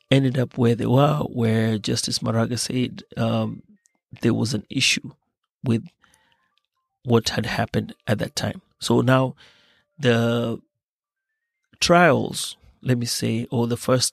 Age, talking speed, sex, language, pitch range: 30-49, 130 wpm, male, Swahili, 115-135 Hz